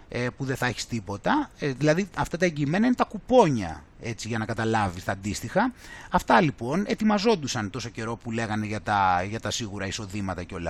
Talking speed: 185 wpm